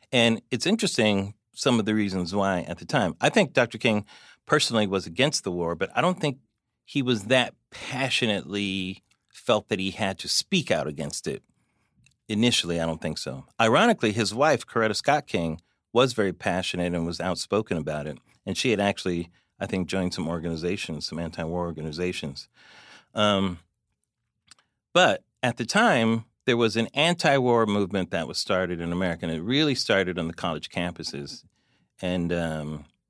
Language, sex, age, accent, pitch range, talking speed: English, male, 40-59, American, 90-115 Hz, 170 wpm